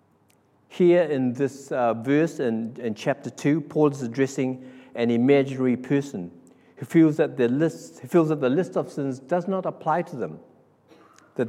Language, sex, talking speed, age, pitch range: English, male, 165 wpm, 60-79, 120-145 Hz